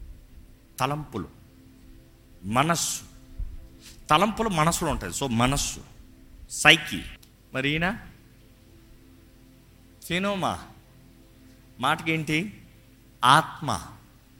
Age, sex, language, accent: 50-69, male, Telugu, native